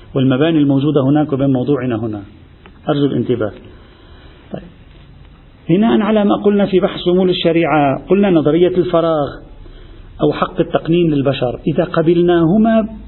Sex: male